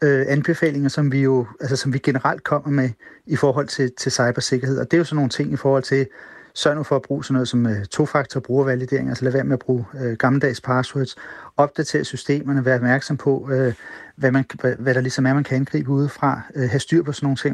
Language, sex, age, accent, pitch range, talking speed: Danish, male, 40-59, native, 130-150 Hz, 225 wpm